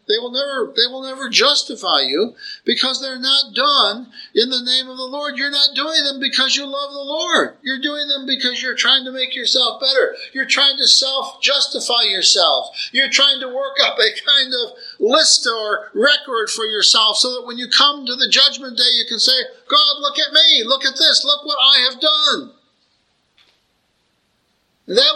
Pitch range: 245-305 Hz